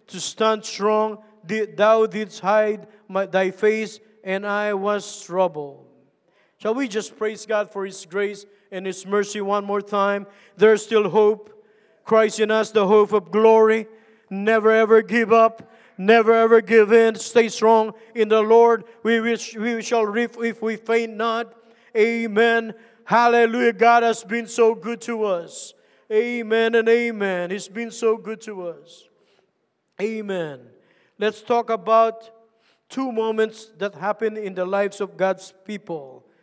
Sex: male